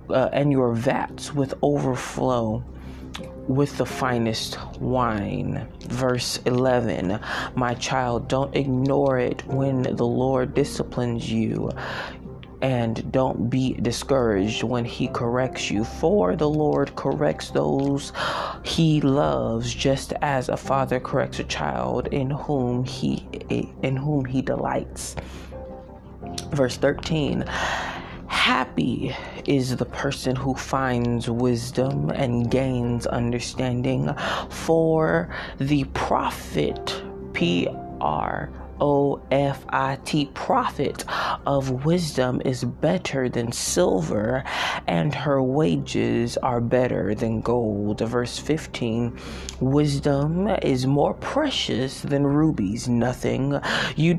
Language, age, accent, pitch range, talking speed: English, 20-39, American, 110-135 Hz, 100 wpm